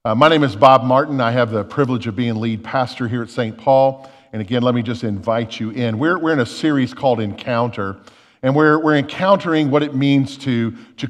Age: 50-69